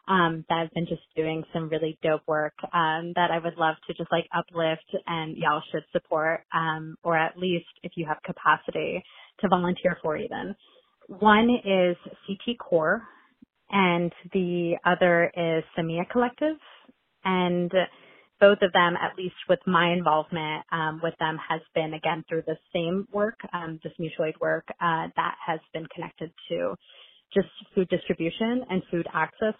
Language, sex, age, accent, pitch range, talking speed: English, female, 20-39, American, 160-185 Hz, 165 wpm